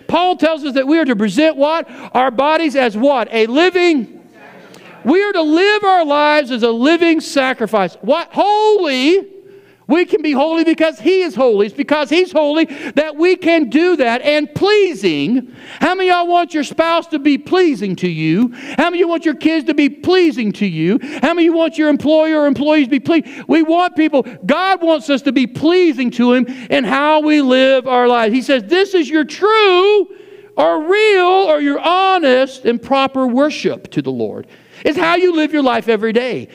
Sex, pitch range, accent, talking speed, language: male, 265-330 Hz, American, 205 wpm, English